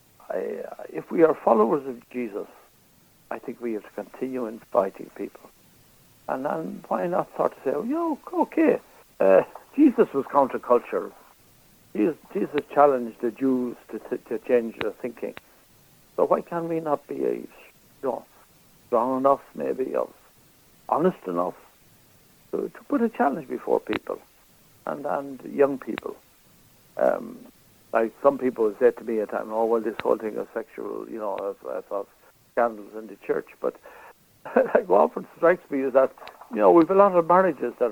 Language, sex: English, male